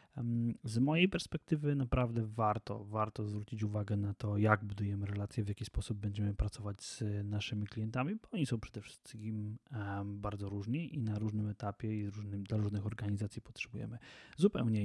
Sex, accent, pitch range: male, native, 105-125 Hz